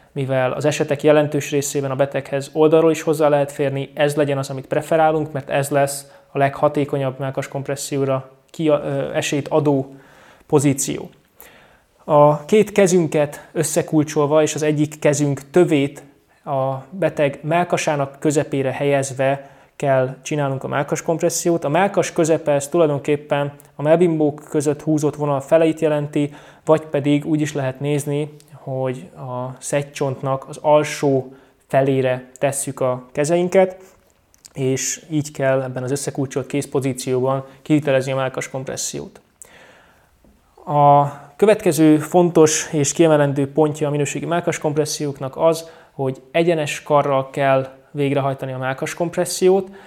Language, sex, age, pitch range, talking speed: Hungarian, male, 20-39, 140-155 Hz, 120 wpm